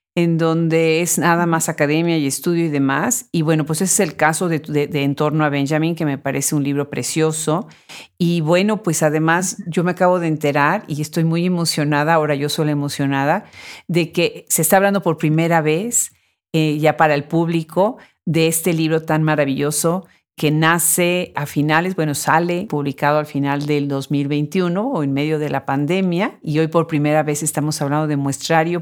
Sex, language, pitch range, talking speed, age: female, Spanish, 150-175 Hz, 190 wpm, 50-69